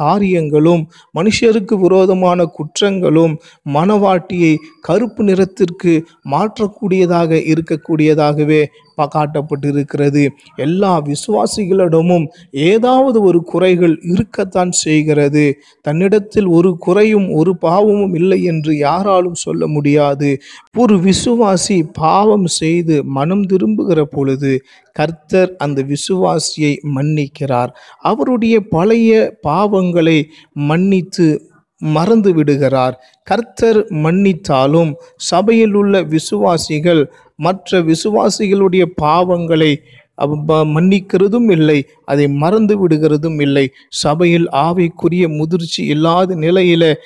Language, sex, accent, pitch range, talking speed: Tamil, male, native, 155-190 Hz, 80 wpm